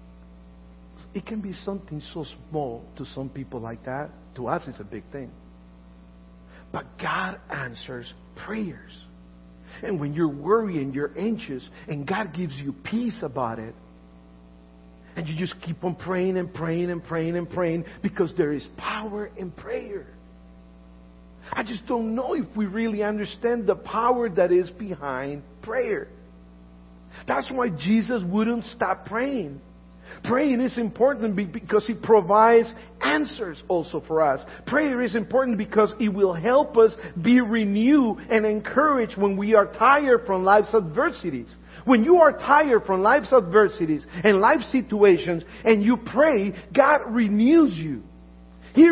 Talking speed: 145 wpm